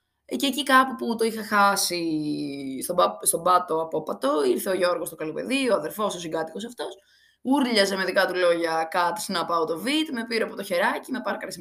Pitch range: 165-240 Hz